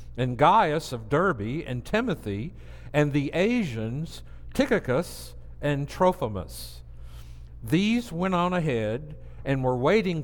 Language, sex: English, male